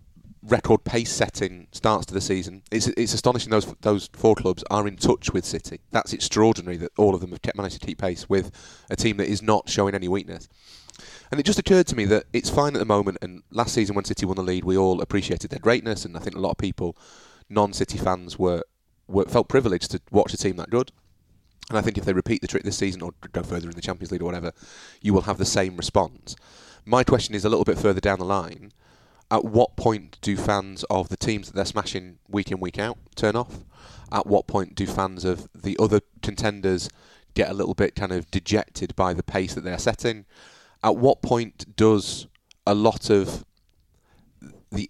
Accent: British